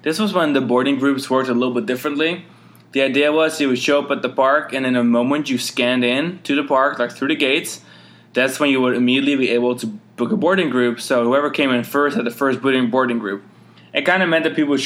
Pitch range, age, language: 125-150 Hz, 20-39, English